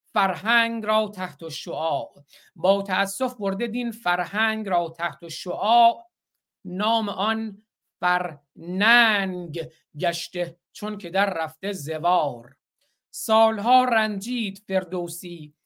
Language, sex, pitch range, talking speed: Persian, male, 175-225 Hz, 95 wpm